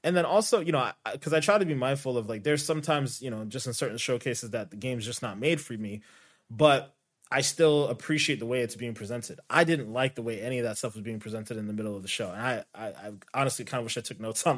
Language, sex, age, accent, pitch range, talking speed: English, male, 20-39, American, 115-145 Hz, 290 wpm